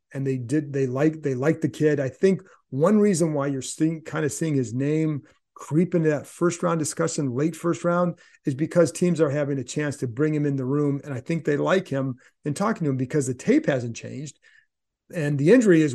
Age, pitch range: 40-59, 135-170 Hz